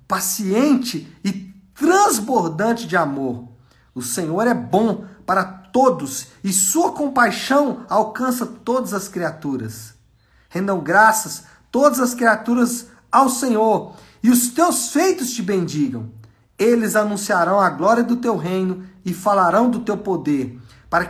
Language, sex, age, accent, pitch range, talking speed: Portuguese, male, 50-69, Brazilian, 160-220 Hz, 125 wpm